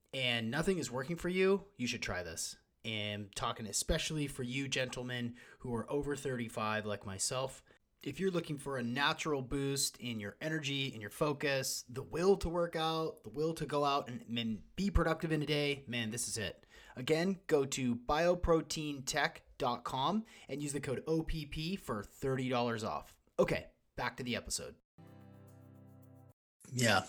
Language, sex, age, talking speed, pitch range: English, male, 30-49, 160 wpm, 120-150 Hz